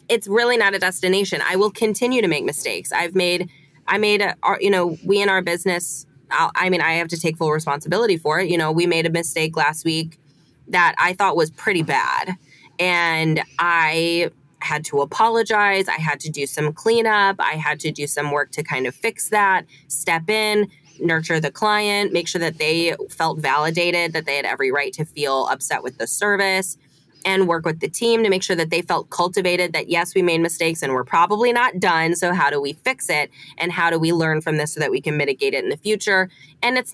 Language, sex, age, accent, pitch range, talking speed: English, female, 20-39, American, 155-195 Hz, 220 wpm